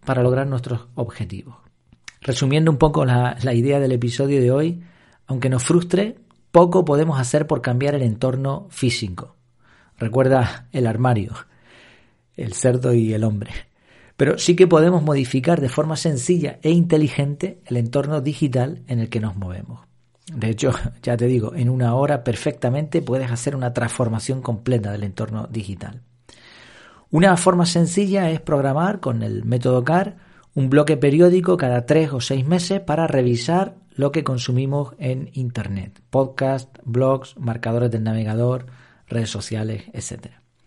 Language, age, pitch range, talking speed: Spanish, 40-59, 120-155 Hz, 150 wpm